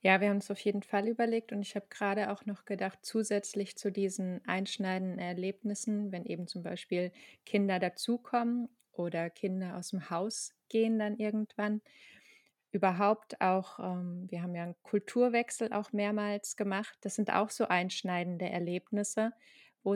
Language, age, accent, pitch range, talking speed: German, 20-39, German, 185-220 Hz, 155 wpm